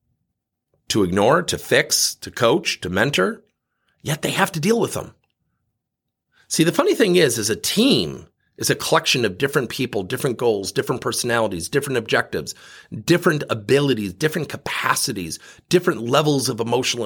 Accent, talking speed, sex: American, 150 wpm, male